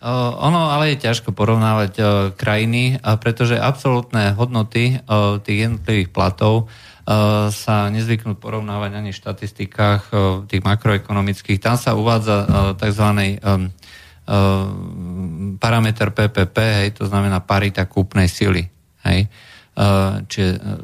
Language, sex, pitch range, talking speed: Slovak, male, 100-115 Hz, 125 wpm